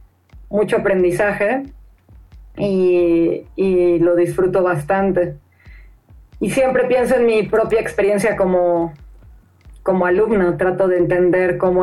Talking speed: 105 wpm